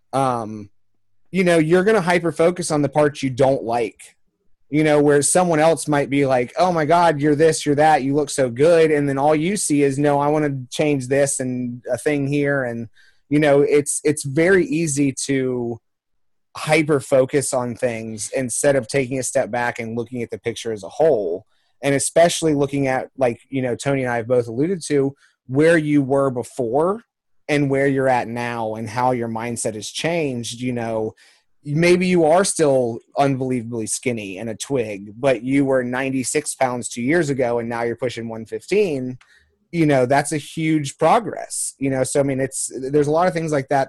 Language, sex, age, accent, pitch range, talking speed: English, male, 30-49, American, 120-150 Hz, 200 wpm